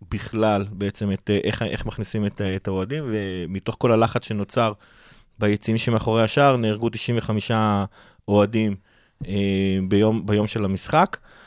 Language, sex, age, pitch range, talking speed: Hebrew, male, 30-49, 100-115 Hz, 125 wpm